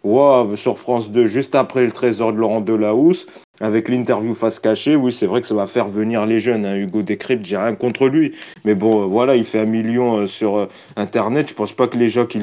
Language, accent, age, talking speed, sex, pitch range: French, French, 30-49, 235 wpm, male, 105-125 Hz